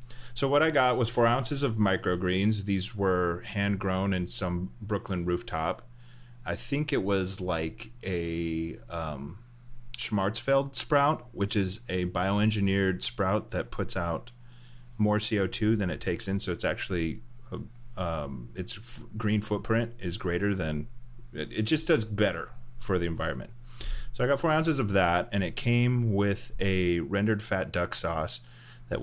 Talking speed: 155 wpm